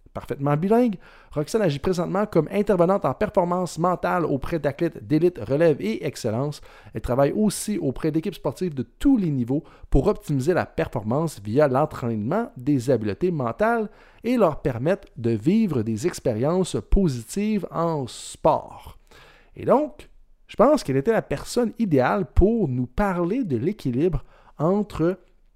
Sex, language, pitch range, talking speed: male, French, 130-195 Hz, 140 wpm